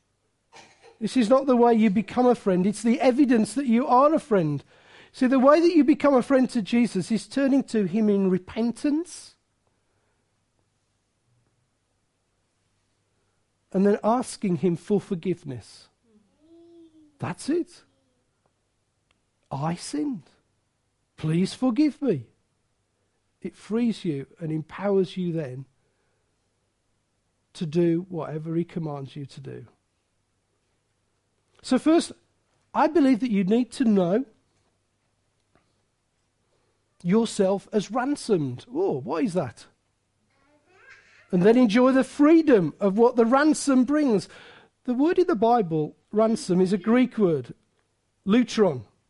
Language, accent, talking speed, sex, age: English, British, 120 wpm, male, 50-69